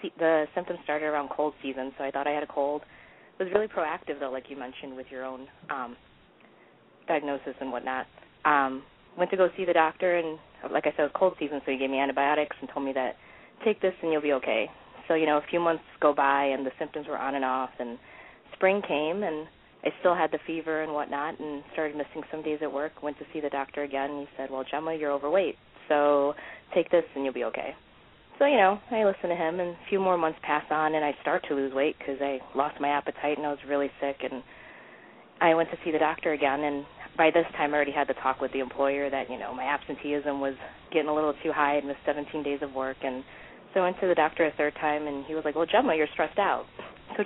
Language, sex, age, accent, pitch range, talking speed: English, female, 20-39, American, 140-165 Hz, 250 wpm